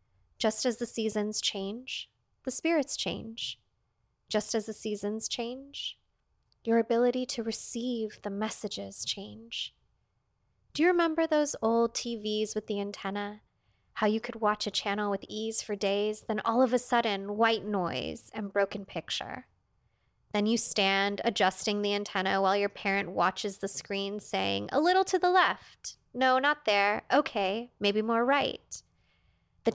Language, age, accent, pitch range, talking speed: English, 20-39, American, 195-245 Hz, 150 wpm